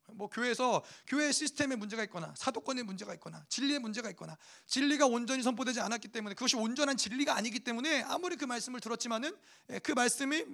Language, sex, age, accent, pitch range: Korean, male, 30-49, native, 185-270 Hz